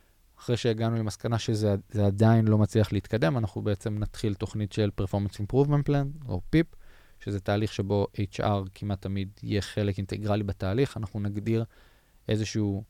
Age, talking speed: 20-39, 145 wpm